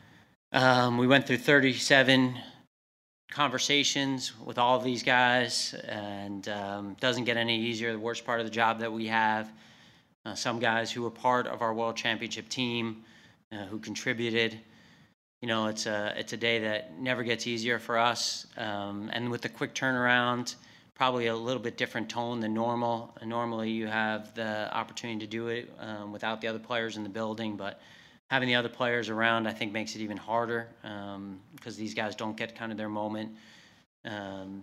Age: 30-49